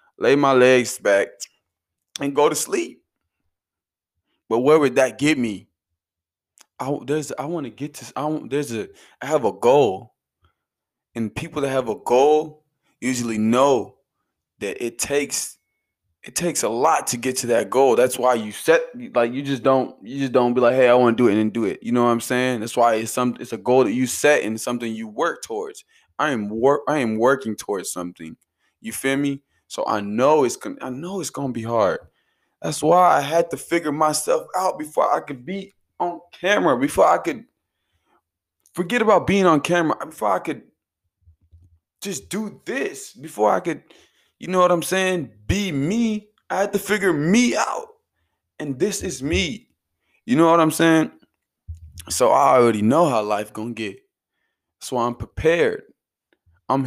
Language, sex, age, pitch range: English, male, 20-39, 110-165 Hz